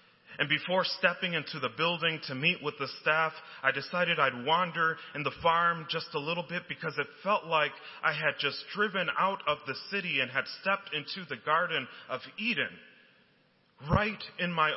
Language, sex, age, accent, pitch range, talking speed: English, male, 30-49, American, 140-180 Hz, 185 wpm